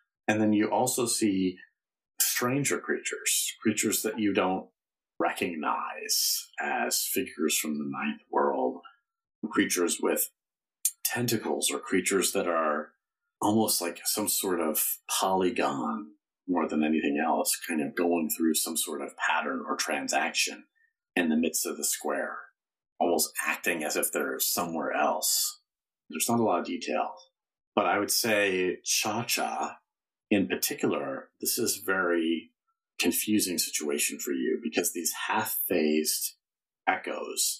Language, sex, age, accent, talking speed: English, male, 40-59, American, 130 wpm